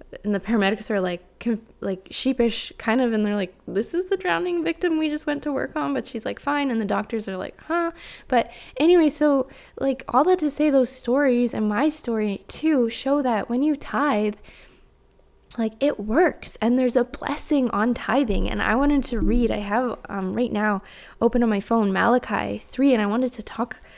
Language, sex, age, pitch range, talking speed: English, female, 10-29, 205-275 Hz, 205 wpm